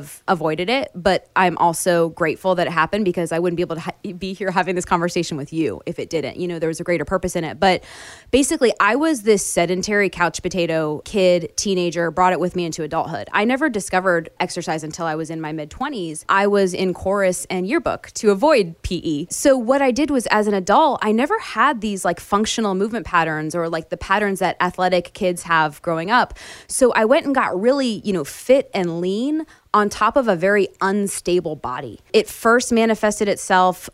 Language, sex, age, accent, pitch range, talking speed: English, female, 20-39, American, 170-200 Hz, 210 wpm